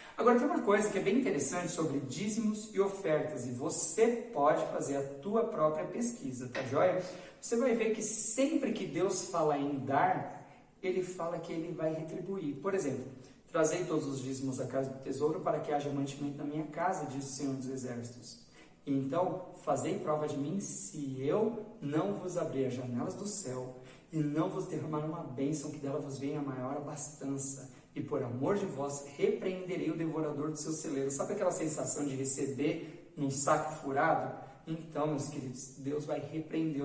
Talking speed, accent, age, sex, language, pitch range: 180 wpm, Brazilian, 40-59, male, Portuguese, 135-185 Hz